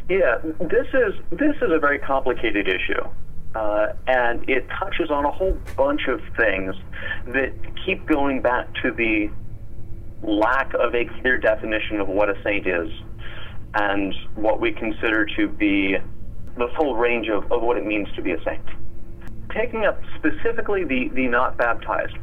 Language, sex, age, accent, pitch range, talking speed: English, male, 40-59, American, 105-135 Hz, 160 wpm